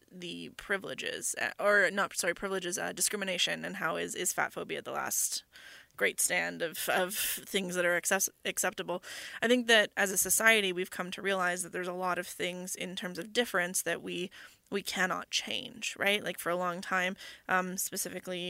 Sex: female